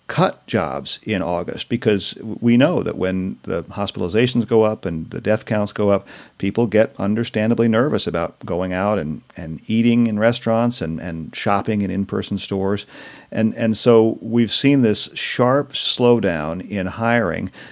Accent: American